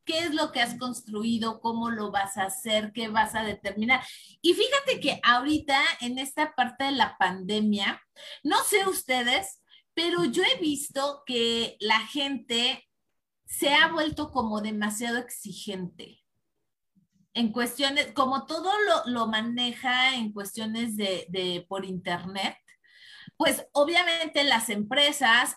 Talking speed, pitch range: 135 wpm, 215-275 Hz